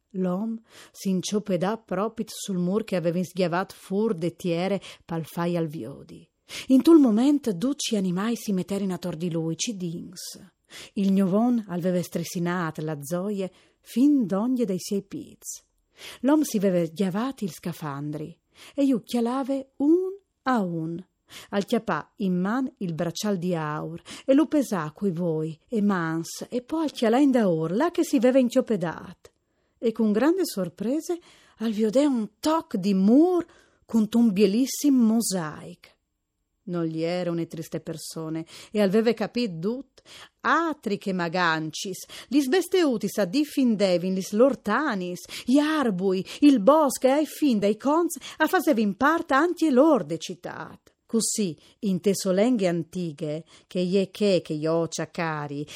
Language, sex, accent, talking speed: Italian, female, native, 140 wpm